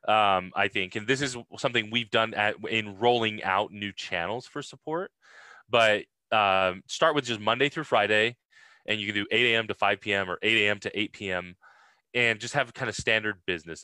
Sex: male